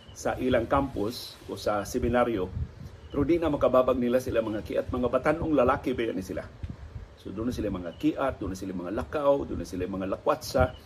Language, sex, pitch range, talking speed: Filipino, male, 100-145 Hz, 165 wpm